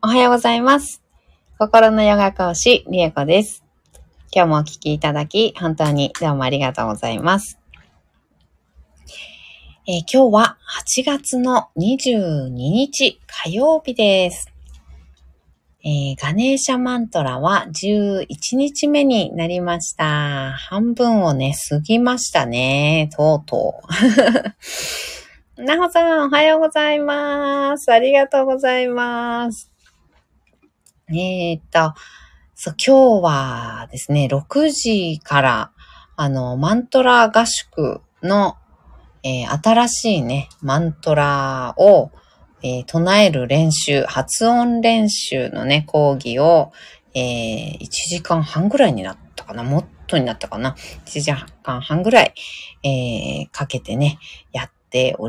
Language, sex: Japanese, female